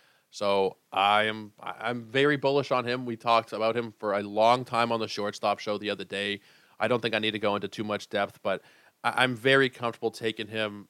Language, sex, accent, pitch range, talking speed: English, male, American, 105-125 Hz, 215 wpm